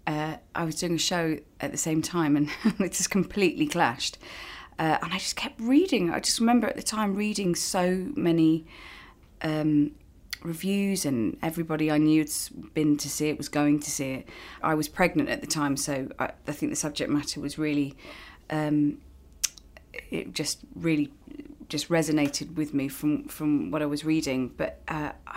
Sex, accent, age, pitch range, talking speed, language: female, British, 30-49, 145-170 Hz, 180 wpm, English